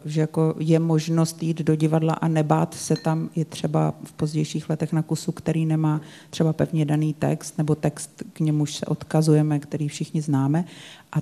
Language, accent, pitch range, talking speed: Czech, native, 150-165 Hz, 180 wpm